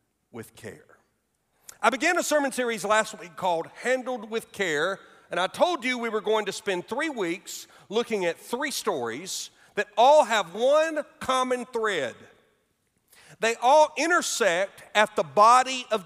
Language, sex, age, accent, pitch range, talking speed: English, male, 50-69, American, 175-260 Hz, 155 wpm